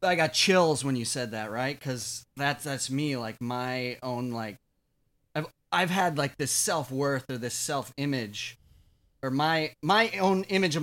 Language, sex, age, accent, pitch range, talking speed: English, male, 30-49, American, 125-155 Hz, 170 wpm